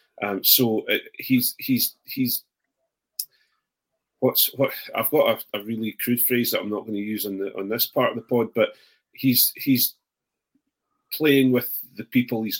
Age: 40-59